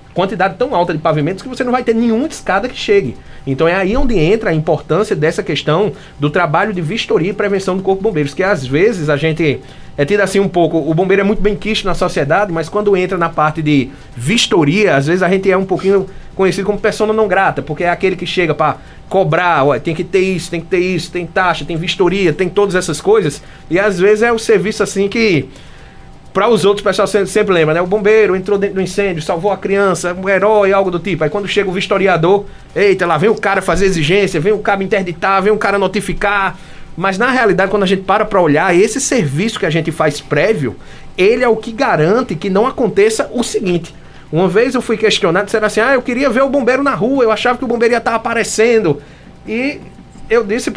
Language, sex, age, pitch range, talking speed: Portuguese, male, 20-39, 170-215 Hz, 230 wpm